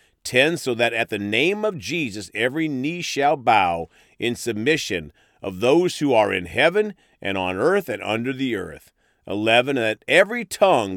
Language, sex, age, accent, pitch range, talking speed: English, male, 40-59, American, 105-155 Hz, 170 wpm